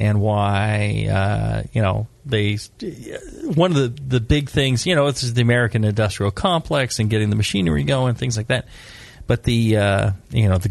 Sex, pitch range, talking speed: male, 110-150 Hz, 190 wpm